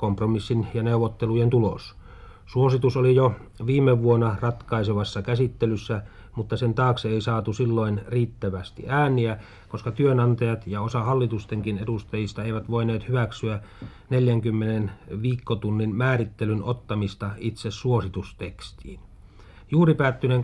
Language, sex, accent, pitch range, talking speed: Finnish, male, native, 100-125 Hz, 105 wpm